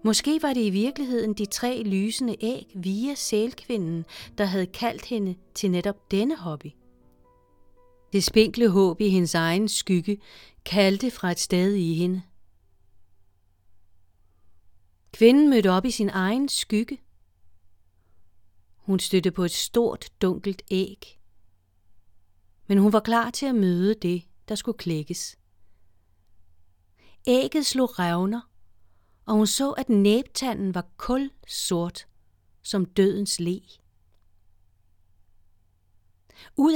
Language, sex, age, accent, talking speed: English, female, 40-59, Danish, 120 wpm